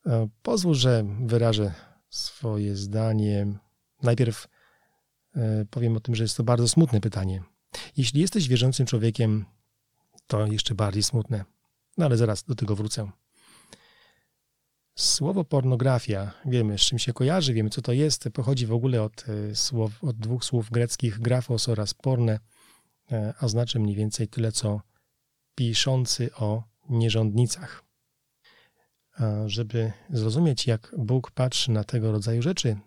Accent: native